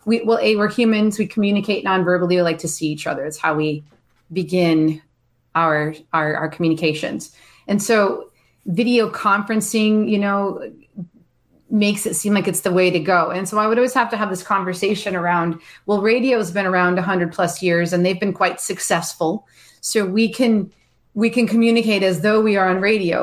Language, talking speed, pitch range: English, 190 wpm, 175-215 Hz